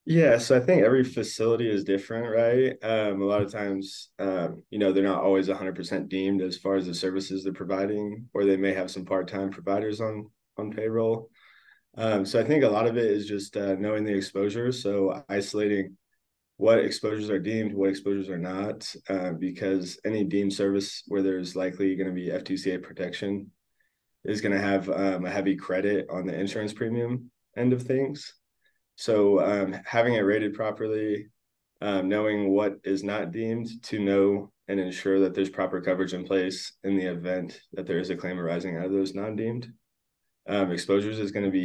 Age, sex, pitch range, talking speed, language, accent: 20-39, male, 95-110 Hz, 185 wpm, English, American